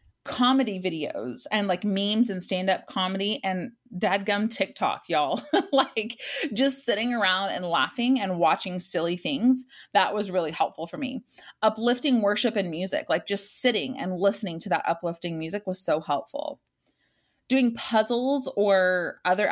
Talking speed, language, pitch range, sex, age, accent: 150 wpm, English, 180-225 Hz, female, 20-39, American